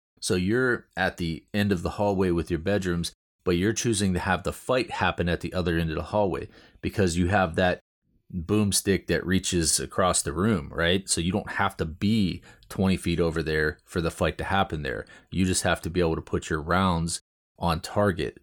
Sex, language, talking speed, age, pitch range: male, English, 210 wpm, 30-49, 85-95 Hz